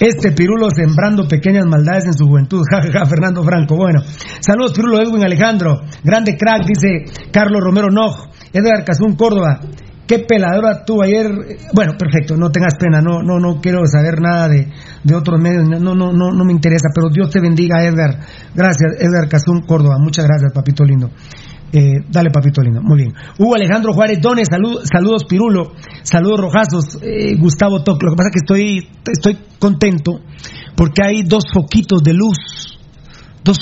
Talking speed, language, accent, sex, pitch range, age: 175 wpm, Spanish, Mexican, male, 150-195 Hz, 40-59